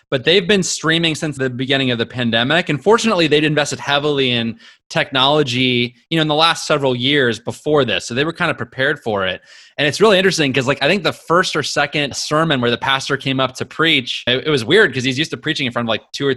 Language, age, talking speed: English, 20-39, 255 wpm